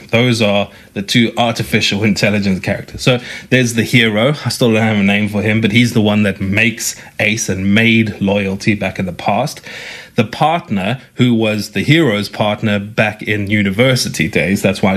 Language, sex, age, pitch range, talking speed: English, male, 30-49, 105-120 Hz, 185 wpm